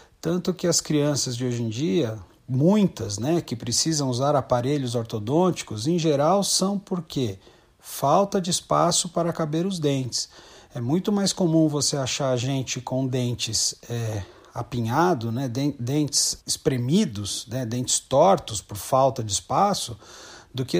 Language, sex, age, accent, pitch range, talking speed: Portuguese, male, 40-59, Brazilian, 130-180 Hz, 145 wpm